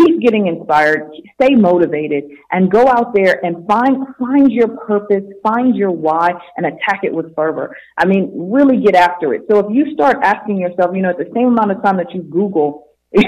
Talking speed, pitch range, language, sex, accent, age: 205 wpm, 175-220 Hz, English, female, American, 40-59